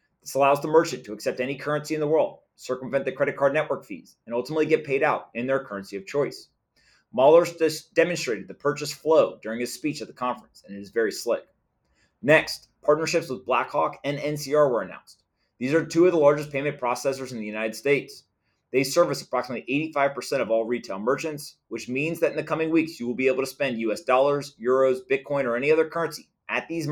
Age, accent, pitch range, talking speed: 30-49, American, 125-155 Hz, 210 wpm